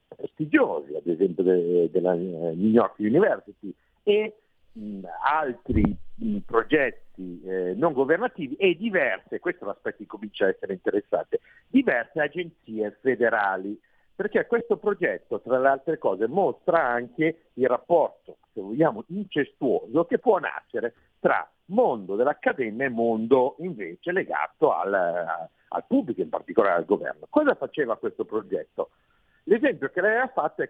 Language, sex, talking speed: Italian, male, 130 wpm